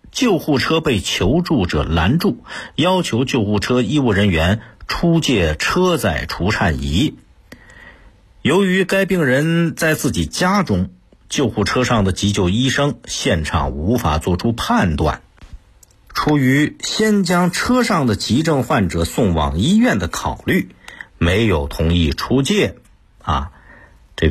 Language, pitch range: Chinese, 85-130 Hz